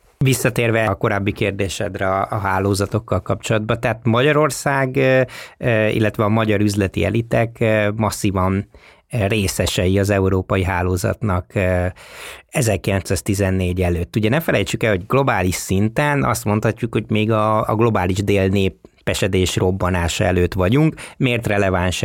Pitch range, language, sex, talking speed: 95-115 Hz, Hungarian, male, 110 wpm